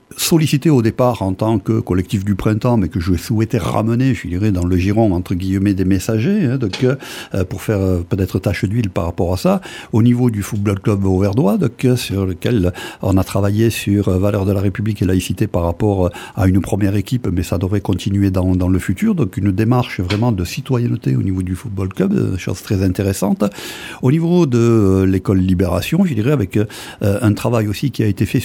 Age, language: 60-79, French